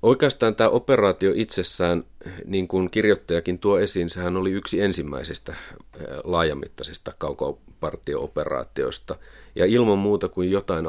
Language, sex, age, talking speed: Finnish, male, 30-49, 110 wpm